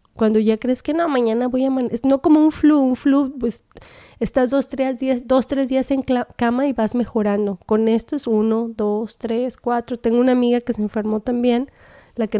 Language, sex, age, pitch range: Spanish, female, 20-39, 210-245 Hz